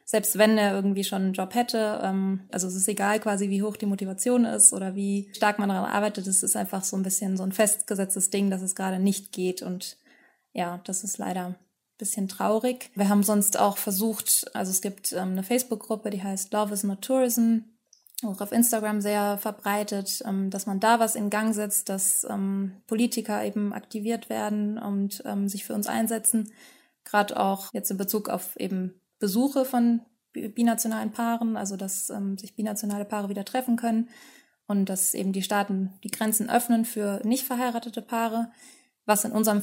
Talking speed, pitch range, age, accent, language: 180 wpm, 195-220 Hz, 20-39, German, German